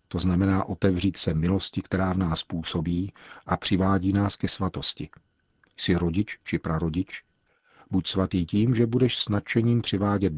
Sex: male